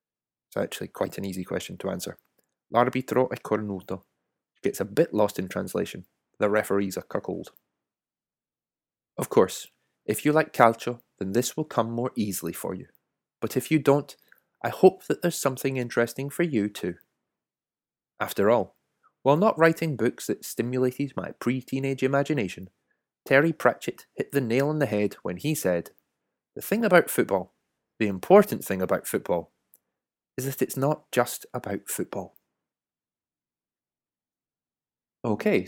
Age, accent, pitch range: 20-39, British, 105-150 Hz